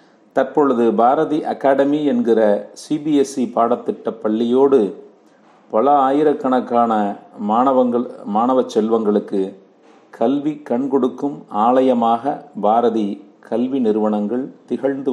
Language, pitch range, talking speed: Tamil, 105-145 Hz, 75 wpm